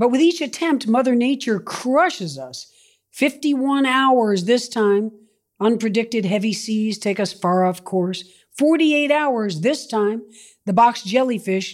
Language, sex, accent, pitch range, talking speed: English, female, American, 180-255 Hz, 140 wpm